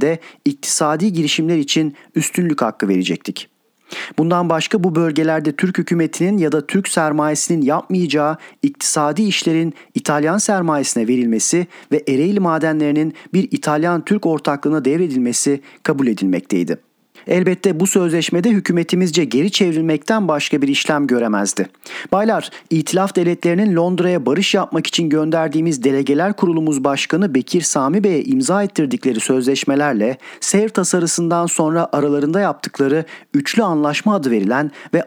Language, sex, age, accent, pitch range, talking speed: Turkish, male, 40-59, native, 140-180 Hz, 115 wpm